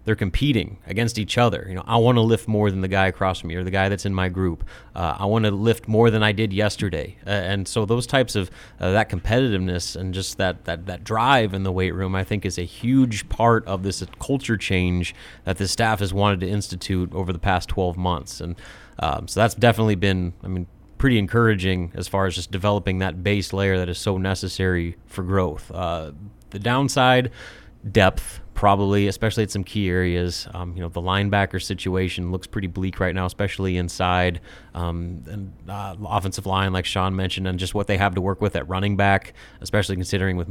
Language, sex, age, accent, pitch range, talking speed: English, male, 30-49, American, 90-105 Hz, 215 wpm